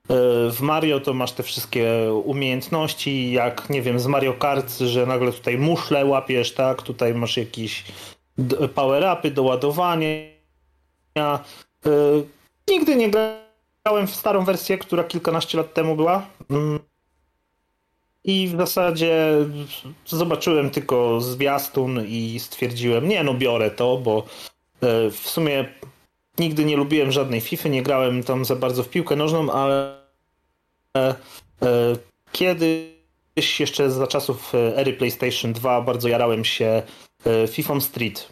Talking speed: 120 wpm